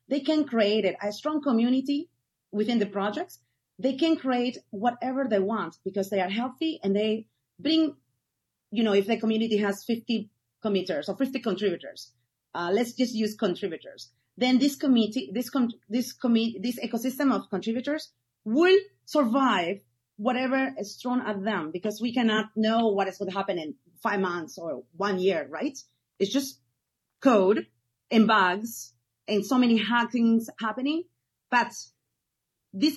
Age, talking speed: 30-49, 155 wpm